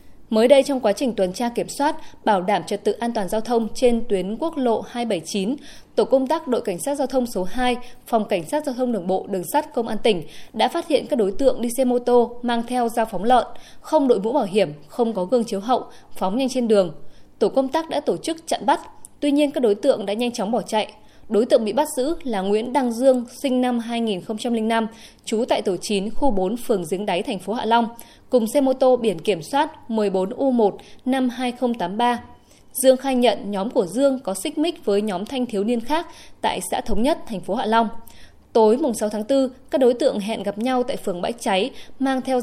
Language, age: Vietnamese, 20-39